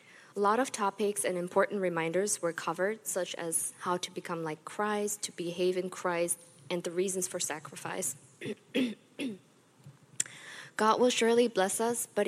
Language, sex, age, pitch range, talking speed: English, female, 20-39, 175-205 Hz, 150 wpm